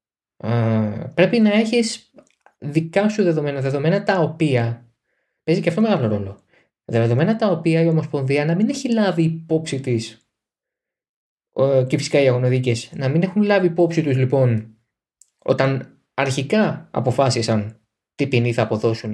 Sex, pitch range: male, 115-175 Hz